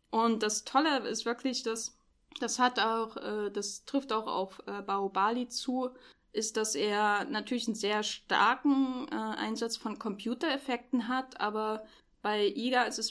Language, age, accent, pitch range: German, 10-29, German, 210-245 Hz